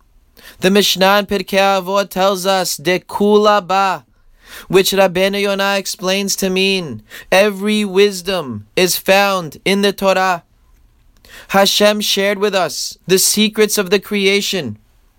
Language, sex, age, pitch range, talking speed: English, male, 20-39, 190-210 Hz, 115 wpm